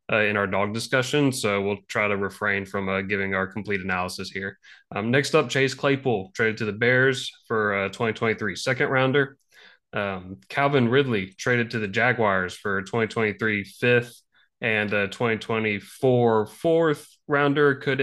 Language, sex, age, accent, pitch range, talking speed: English, male, 20-39, American, 105-125 Hz, 160 wpm